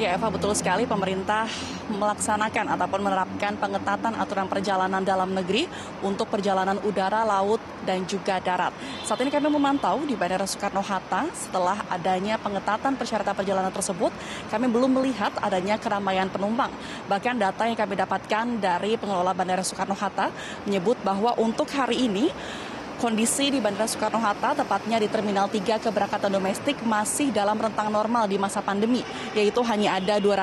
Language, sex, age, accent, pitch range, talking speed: Indonesian, female, 20-39, native, 195-225 Hz, 145 wpm